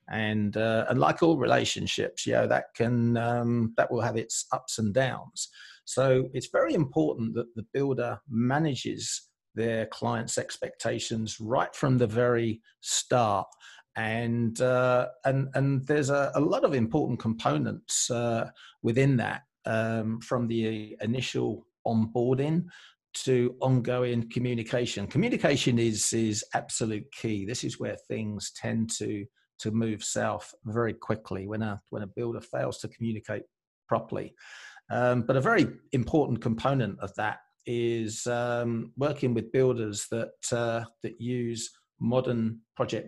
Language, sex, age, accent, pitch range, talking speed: English, male, 40-59, British, 110-125 Hz, 140 wpm